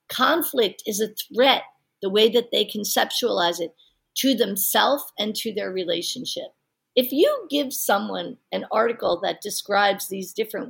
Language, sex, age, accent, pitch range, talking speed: English, female, 50-69, American, 205-260 Hz, 145 wpm